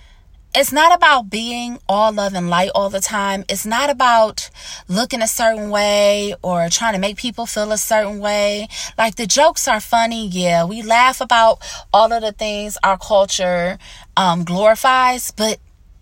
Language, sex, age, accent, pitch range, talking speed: English, female, 20-39, American, 185-245 Hz, 170 wpm